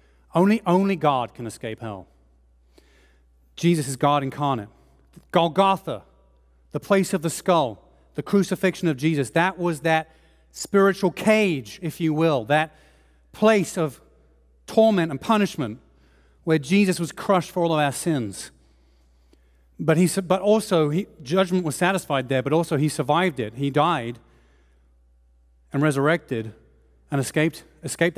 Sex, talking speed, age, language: male, 135 wpm, 40-59, English